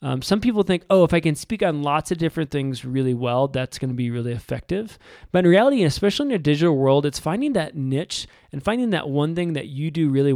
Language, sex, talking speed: English, male, 250 wpm